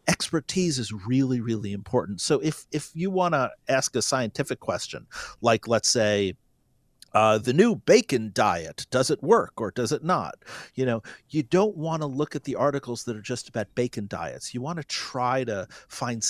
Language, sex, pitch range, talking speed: English, male, 115-160 Hz, 190 wpm